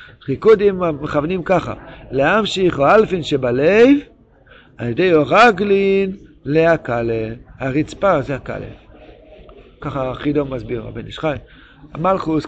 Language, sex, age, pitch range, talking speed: Hebrew, male, 50-69, 140-185 Hz, 95 wpm